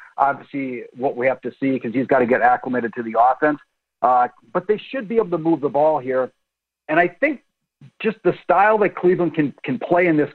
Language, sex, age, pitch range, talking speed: English, male, 50-69, 135-205 Hz, 225 wpm